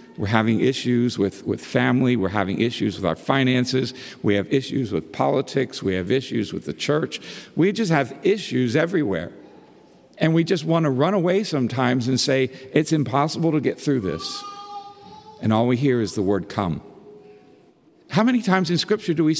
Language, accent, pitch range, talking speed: English, American, 120-165 Hz, 185 wpm